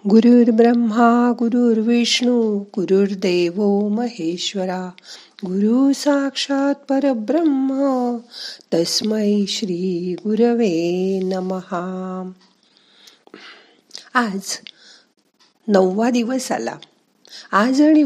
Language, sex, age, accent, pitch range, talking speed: Marathi, female, 50-69, native, 180-240 Hz, 55 wpm